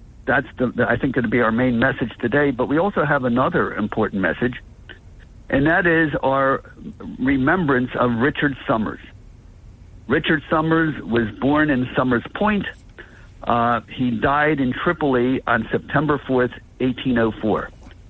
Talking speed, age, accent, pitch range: 135 wpm, 60-79, American, 110-140 Hz